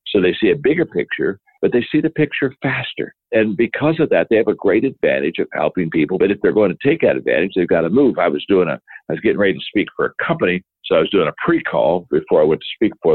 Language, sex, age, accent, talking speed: English, male, 60-79, American, 280 wpm